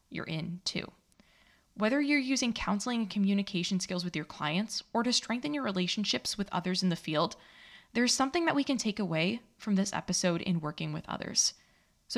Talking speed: 185 wpm